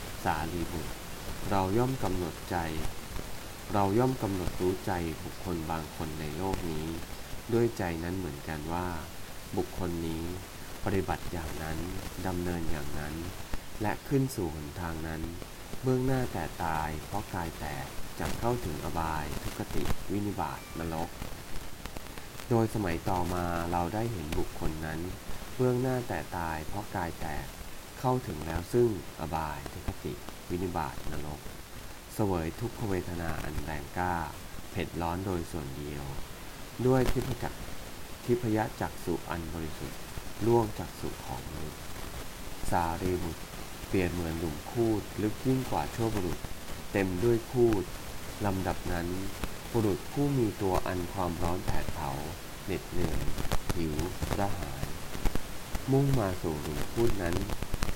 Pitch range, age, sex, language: 80-100 Hz, 20-39, male, English